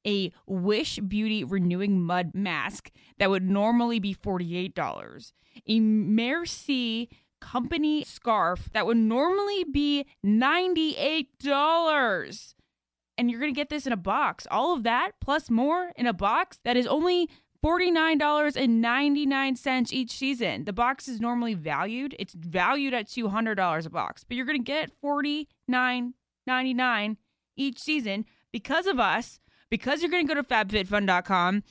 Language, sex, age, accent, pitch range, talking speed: English, female, 20-39, American, 200-280 Hz, 135 wpm